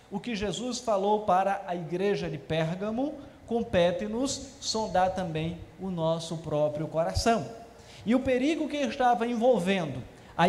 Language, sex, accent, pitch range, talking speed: Portuguese, male, Brazilian, 175-240 Hz, 130 wpm